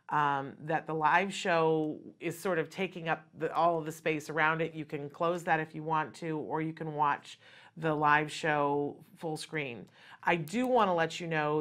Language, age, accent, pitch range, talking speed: English, 40-59, American, 150-180 Hz, 205 wpm